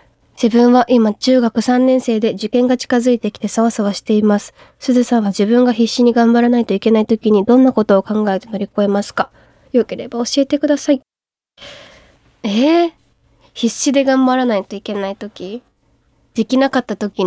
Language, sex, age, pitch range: Japanese, female, 20-39, 195-235 Hz